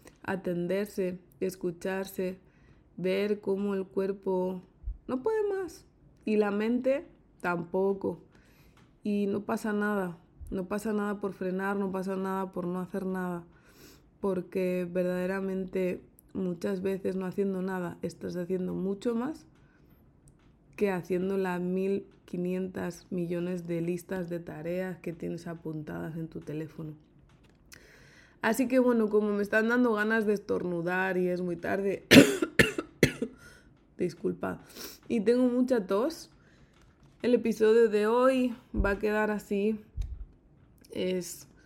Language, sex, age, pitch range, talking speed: Spanish, female, 20-39, 180-210 Hz, 120 wpm